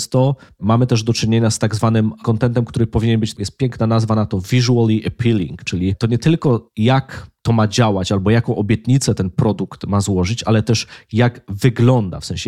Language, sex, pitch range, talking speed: Polish, male, 100-120 Hz, 190 wpm